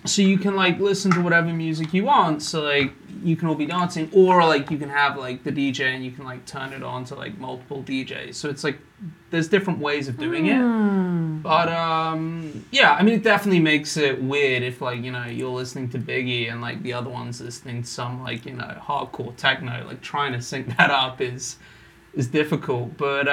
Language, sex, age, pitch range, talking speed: English, male, 20-39, 130-170 Hz, 220 wpm